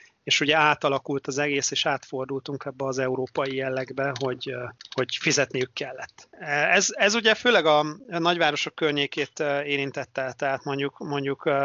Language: Hungarian